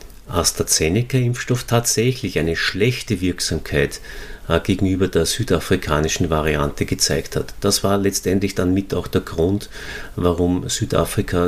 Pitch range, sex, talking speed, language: 90-115 Hz, male, 115 wpm, German